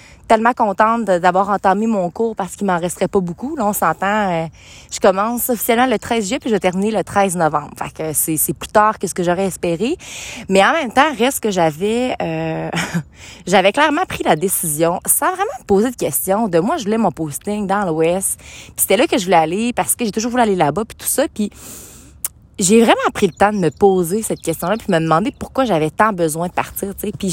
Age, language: 20-39, French